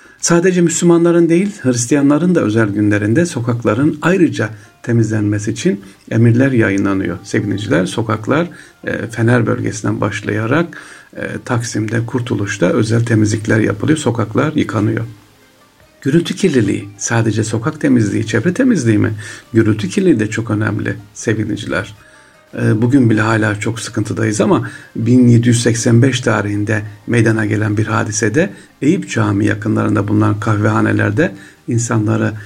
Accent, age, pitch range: native, 60-79, 105-120 Hz